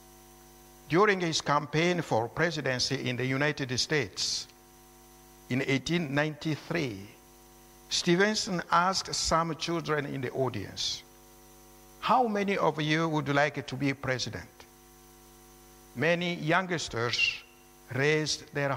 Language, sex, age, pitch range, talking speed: English, male, 60-79, 115-155 Hz, 100 wpm